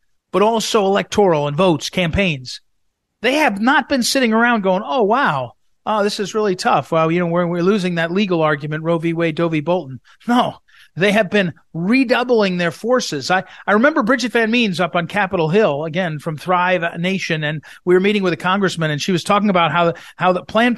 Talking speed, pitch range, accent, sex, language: 210 wpm, 165-220 Hz, American, male, English